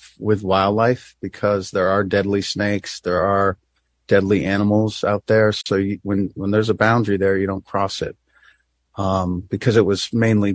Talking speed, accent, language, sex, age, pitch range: 170 wpm, American, English, male, 40-59, 95-110 Hz